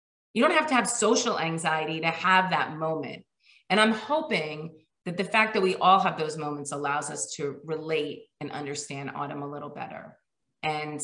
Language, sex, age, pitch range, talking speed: English, female, 30-49, 150-195 Hz, 185 wpm